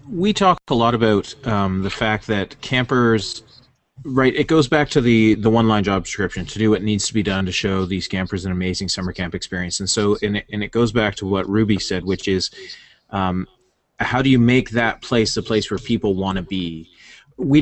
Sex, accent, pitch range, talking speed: male, American, 100-120 Hz, 220 wpm